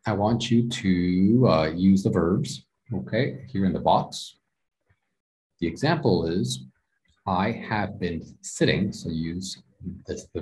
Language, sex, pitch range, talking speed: English, male, 90-130 Hz, 140 wpm